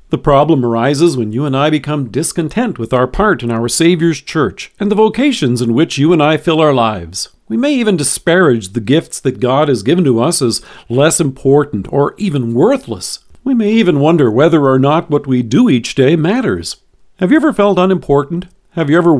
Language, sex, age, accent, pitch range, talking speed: English, male, 50-69, American, 130-185 Hz, 205 wpm